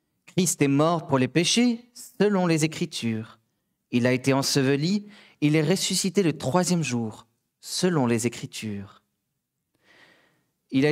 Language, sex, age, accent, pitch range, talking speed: French, male, 40-59, French, 120-185 Hz, 130 wpm